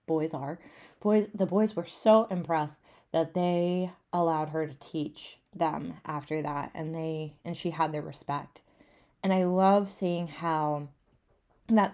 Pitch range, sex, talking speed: 155-180 Hz, female, 150 wpm